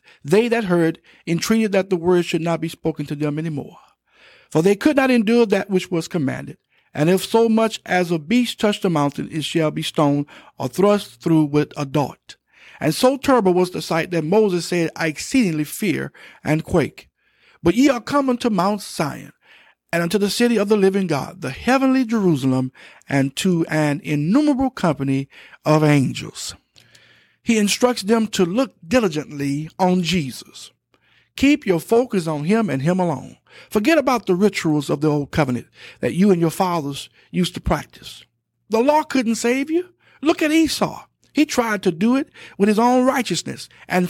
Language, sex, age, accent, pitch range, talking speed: English, male, 60-79, American, 155-230 Hz, 180 wpm